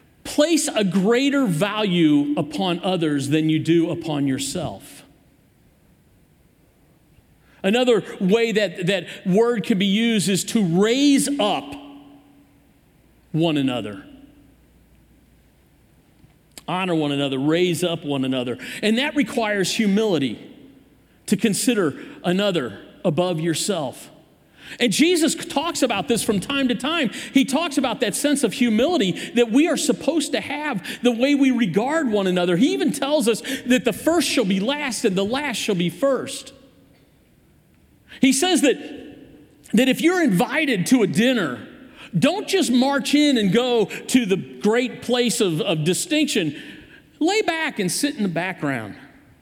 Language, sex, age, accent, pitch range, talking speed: English, male, 50-69, American, 185-270 Hz, 140 wpm